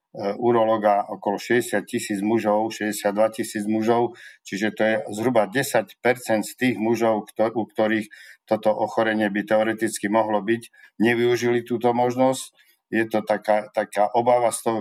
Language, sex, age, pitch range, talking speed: Slovak, male, 50-69, 105-110 Hz, 140 wpm